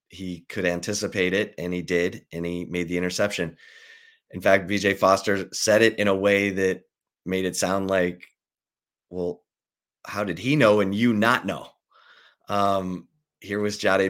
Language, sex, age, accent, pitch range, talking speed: English, male, 30-49, American, 90-100 Hz, 165 wpm